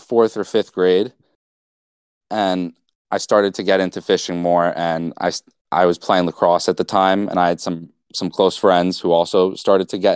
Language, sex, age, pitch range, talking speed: English, male, 20-39, 85-95 Hz, 195 wpm